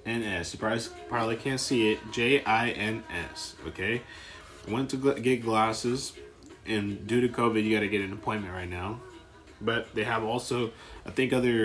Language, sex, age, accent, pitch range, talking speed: English, male, 20-39, American, 100-120 Hz, 175 wpm